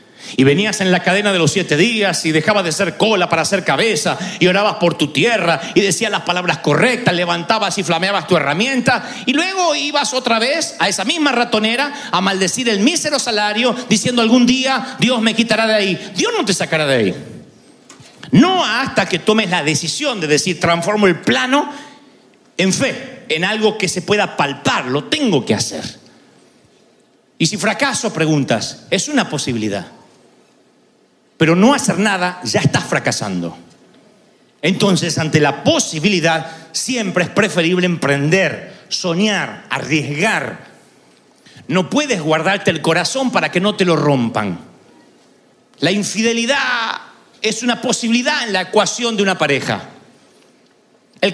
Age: 40-59